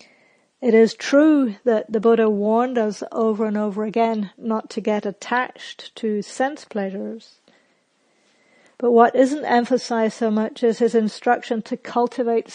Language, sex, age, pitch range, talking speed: English, female, 50-69, 215-240 Hz, 145 wpm